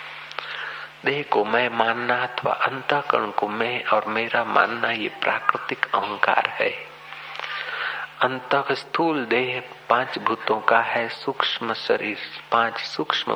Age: 50-69